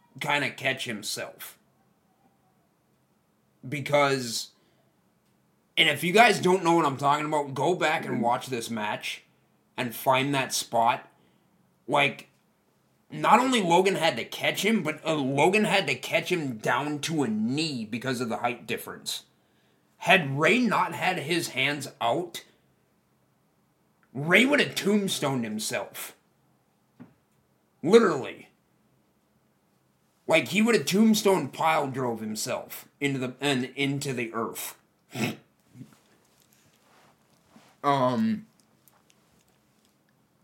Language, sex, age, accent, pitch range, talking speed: English, male, 30-49, American, 125-170 Hz, 115 wpm